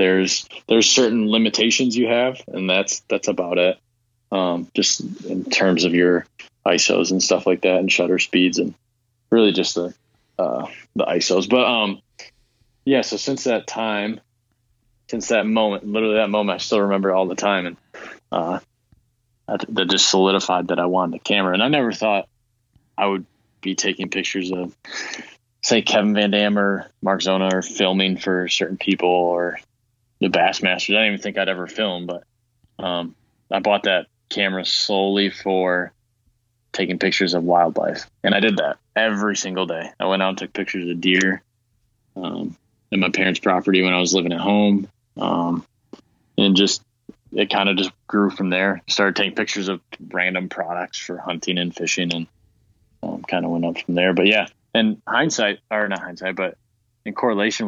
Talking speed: 175 wpm